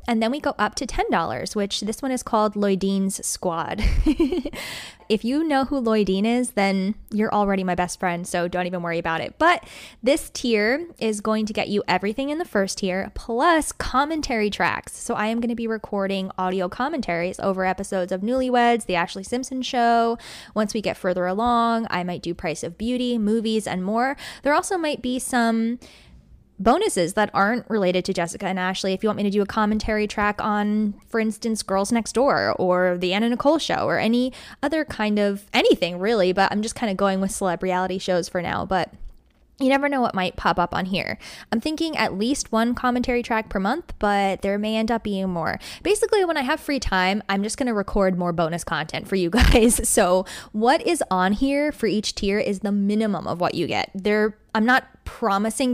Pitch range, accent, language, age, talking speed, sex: 190-240 Hz, American, English, 10-29, 210 wpm, female